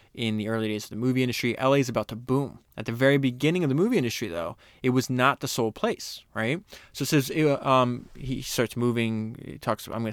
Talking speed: 235 wpm